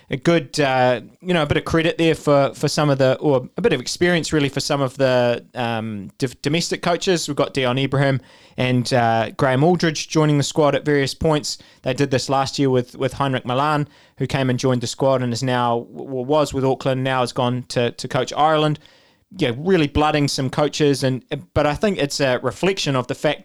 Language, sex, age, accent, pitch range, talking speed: English, male, 20-39, Australian, 130-155 Hz, 225 wpm